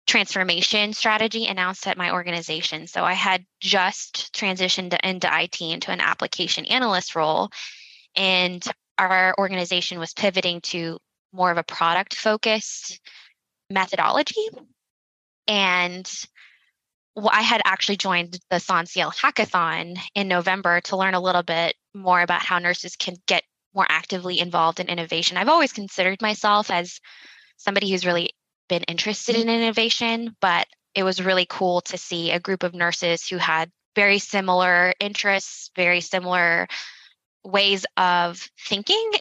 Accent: American